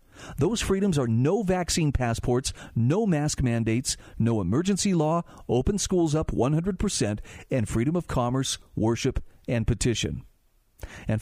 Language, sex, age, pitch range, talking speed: English, male, 40-59, 120-160 Hz, 135 wpm